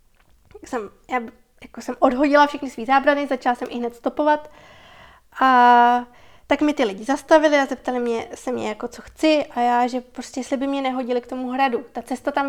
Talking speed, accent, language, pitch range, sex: 195 wpm, native, Czech, 240-280 Hz, female